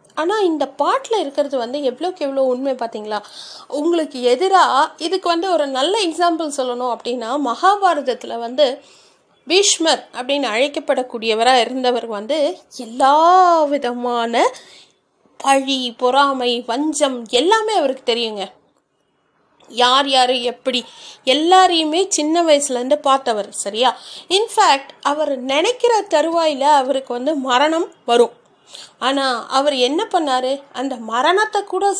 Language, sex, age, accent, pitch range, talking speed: Tamil, female, 30-49, native, 250-340 Hz, 105 wpm